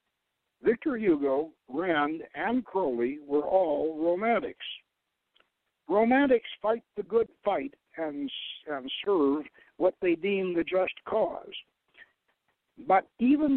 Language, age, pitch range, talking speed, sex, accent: English, 60-79, 155-235 Hz, 105 wpm, male, American